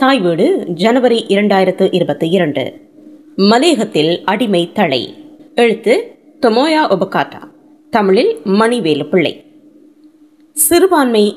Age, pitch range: 20-39, 195-305 Hz